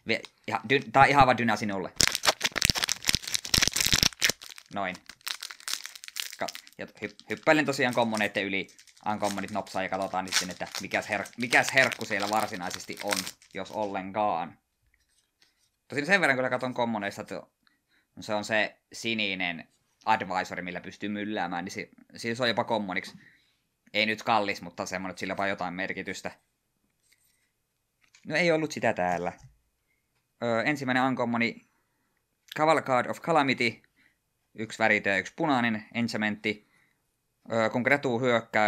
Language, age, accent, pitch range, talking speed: Finnish, 20-39, native, 95-125 Hz, 130 wpm